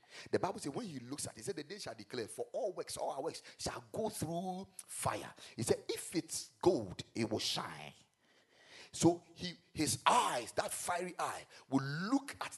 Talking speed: 200 wpm